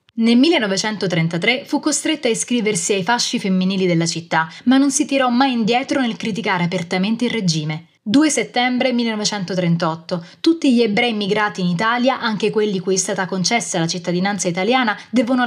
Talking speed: 160 wpm